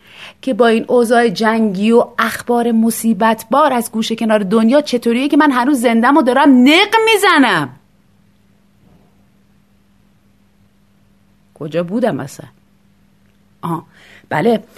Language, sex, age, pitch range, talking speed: Persian, female, 30-49, 180-275 Hz, 110 wpm